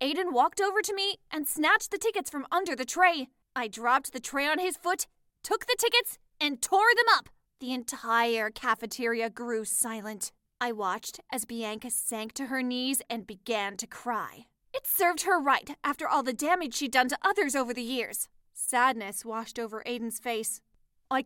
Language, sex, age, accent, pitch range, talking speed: English, female, 20-39, American, 260-390 Hz, 185 wpm